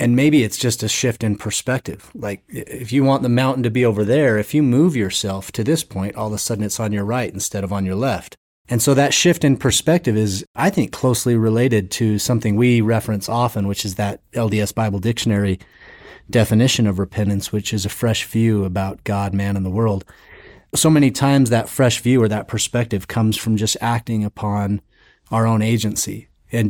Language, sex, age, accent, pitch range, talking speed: English, male, 30-49, American, 105-120 Hz, 205 wpm